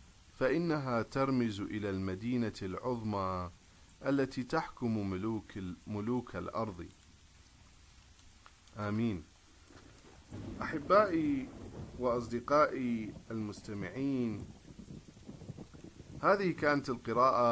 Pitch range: 90-120 Hz